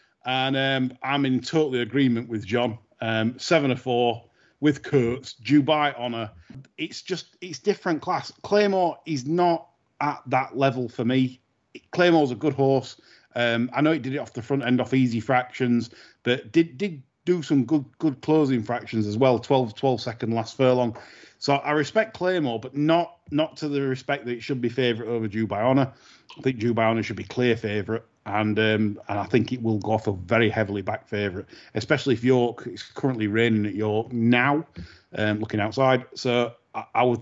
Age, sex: 30-49, male